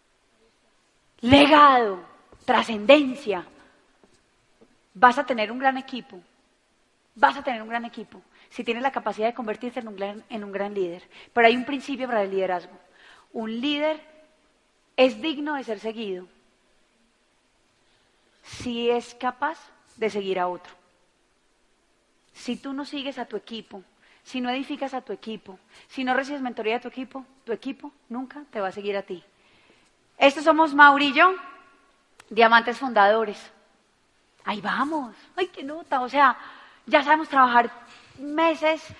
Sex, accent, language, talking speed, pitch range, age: female, Colombian, Spanish, 145 wpm, 220-285 Hz, 30-49